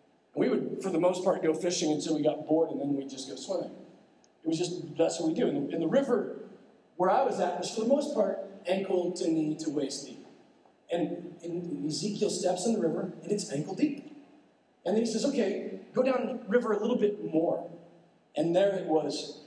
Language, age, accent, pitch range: English, 40-59, American, 150-210 Hz